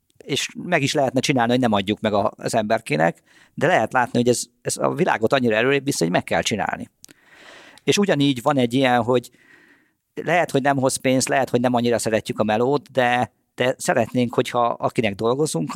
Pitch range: 105-130 Hz